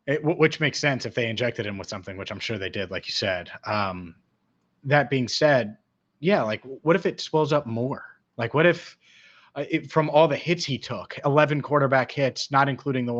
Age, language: 30-49, English